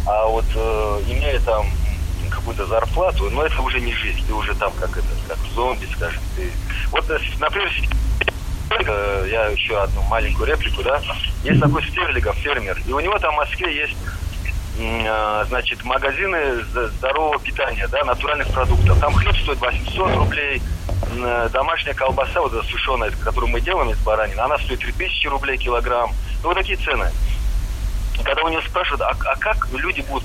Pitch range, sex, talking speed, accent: 85-105 Hz, male, 165 wpm, native